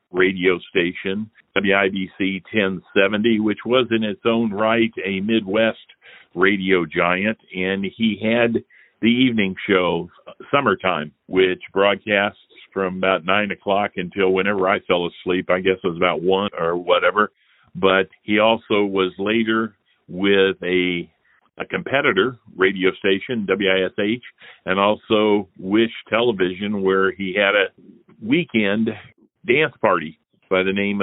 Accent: American